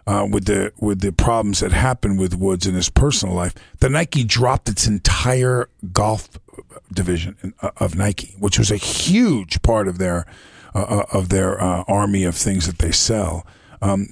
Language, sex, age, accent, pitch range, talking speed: English, male, 50-69, American, 95-125 Hz, 185 wpm